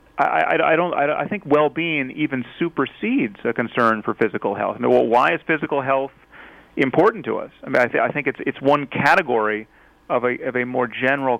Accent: American